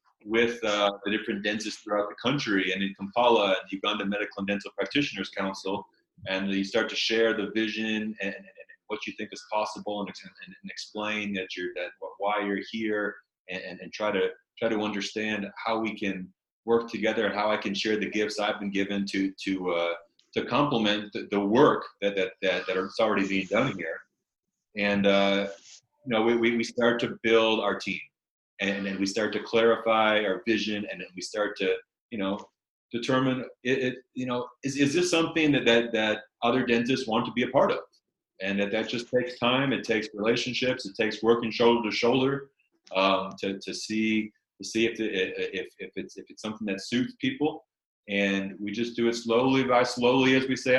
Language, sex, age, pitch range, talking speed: English, male, 30-49, 100-120 Hz, 205 wpm